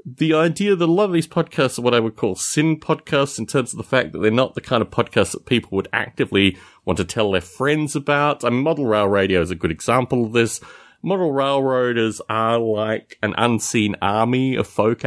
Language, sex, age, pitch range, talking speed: English, male, 30-49, 105-155 Hz, 225 wpm